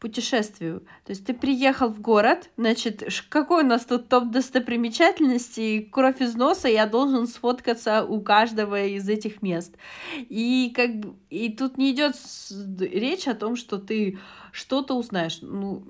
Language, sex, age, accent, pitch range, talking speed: Russian, female, 30-49, native, 185-245 Hz, 150 wpm